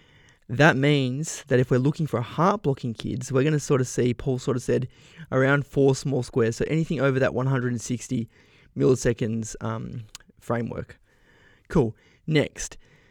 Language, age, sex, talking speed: English, 20-39, male, 160 wpm